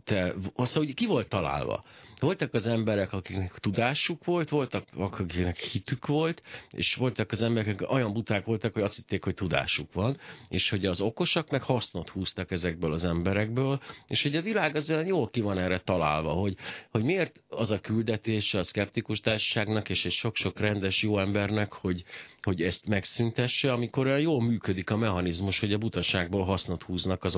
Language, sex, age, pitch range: Hungarian, male, 50-69, 90-115 Hz